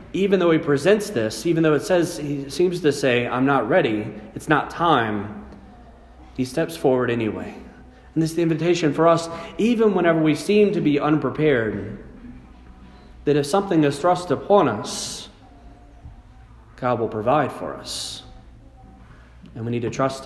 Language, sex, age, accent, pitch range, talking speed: English, male, 40-59, American, 125-160 Hz, 160 wpm